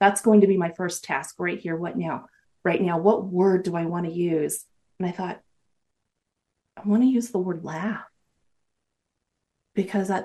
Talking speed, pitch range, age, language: 185 wpm, 175-215 Hz, 30-49, English